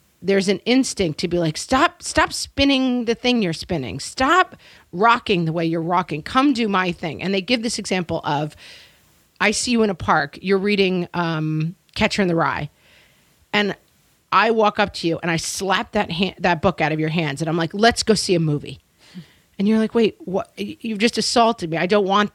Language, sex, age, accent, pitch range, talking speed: English, female, 40-59, American, 170-220 Hz, 210 wpm